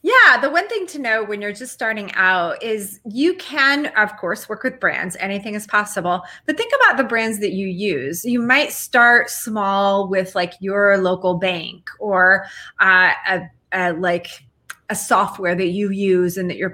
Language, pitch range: English, 185-230 Hz